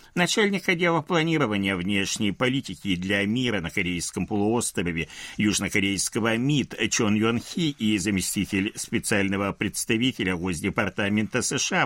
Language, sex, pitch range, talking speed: Russian, male, 95-150 Hz, 105 wpm